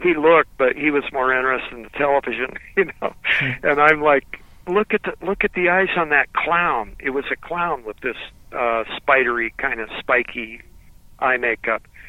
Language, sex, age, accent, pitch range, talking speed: English, male, 50-69, American, 125-155 Hz, 180 wpm